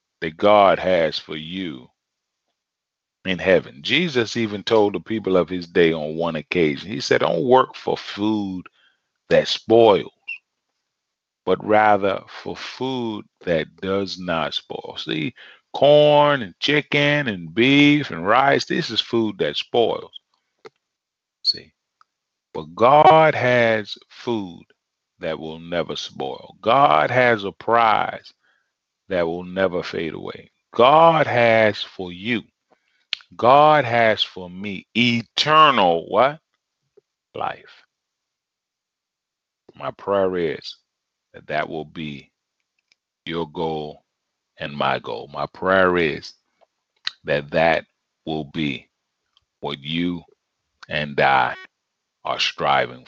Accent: American